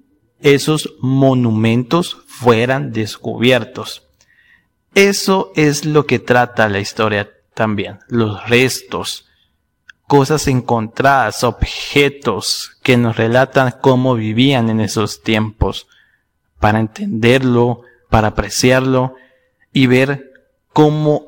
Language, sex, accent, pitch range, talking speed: Spanish, male, Mexican, 110-150 Hz, 90 wpm